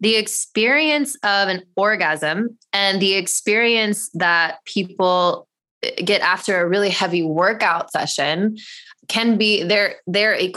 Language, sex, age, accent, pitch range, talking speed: English, female, 20-39, American, 175-215 Hz, 120 wpm